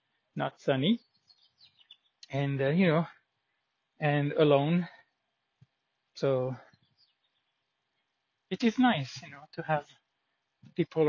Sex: male